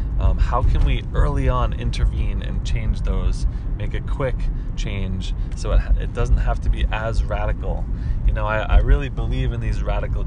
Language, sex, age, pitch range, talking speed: English, male, 20-39, 95-115 Hz, 185 wpm